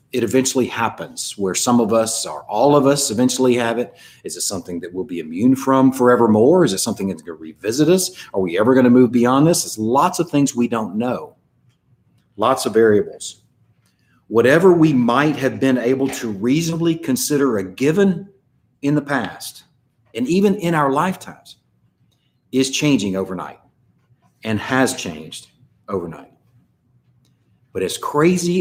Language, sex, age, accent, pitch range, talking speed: English, male, 50-69, American, 110-140 Hz, 165 wpm